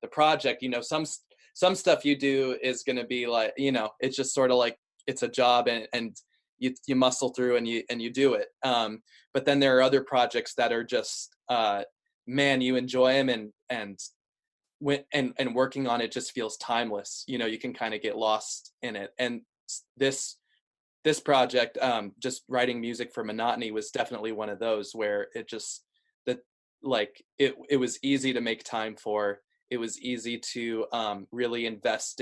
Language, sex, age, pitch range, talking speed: English, male, 20-39, 115-135 Hz, 200 wpm